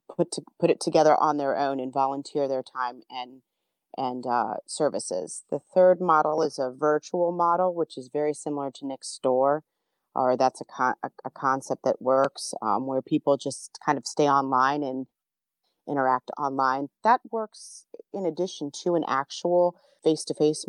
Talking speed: 160 wpm